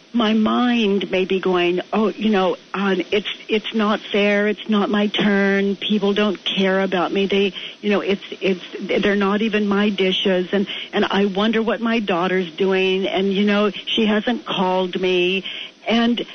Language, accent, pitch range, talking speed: English, American, 195-245 Hz, 175 wpm